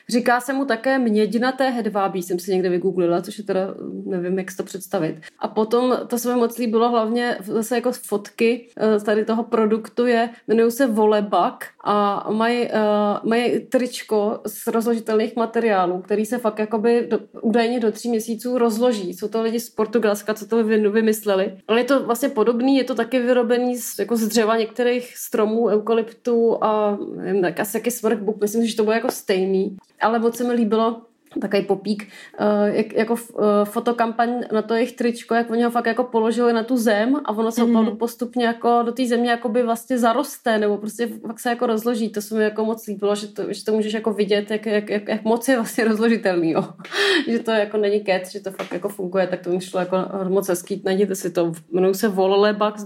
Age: 30-49